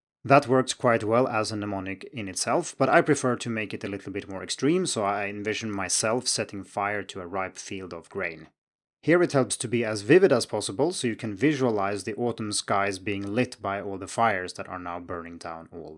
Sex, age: male, 30-49